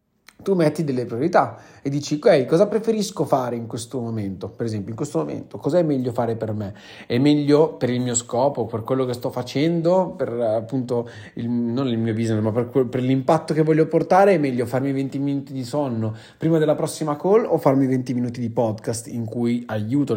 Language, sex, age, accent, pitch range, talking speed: Italian, male, 30-49, native, 115-150 Hz, 200 wpm